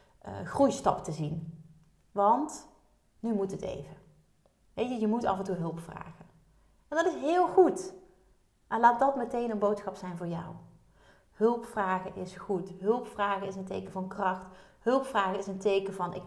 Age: 30-49